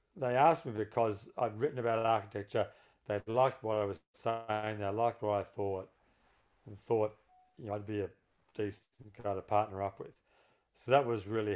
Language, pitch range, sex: English, 105-120 Hz, male